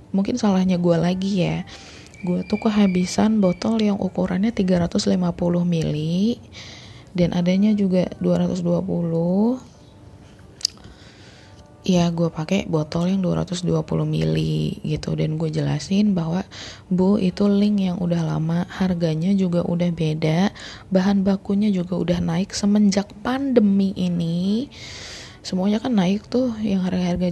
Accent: native